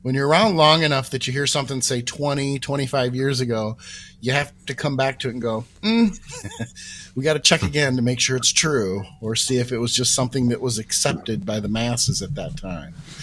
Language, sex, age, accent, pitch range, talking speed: English, male, 40-59, American, 115-145 Hz, 225 wpm